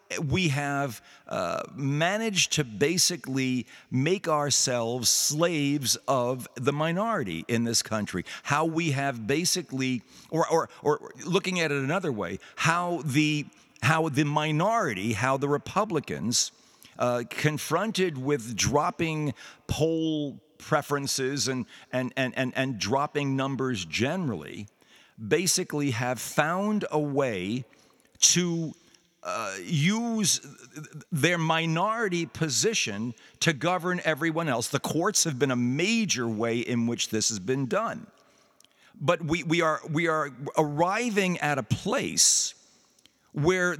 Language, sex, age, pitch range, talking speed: English, male, 50-69, 130-165 Hz, 120 wpm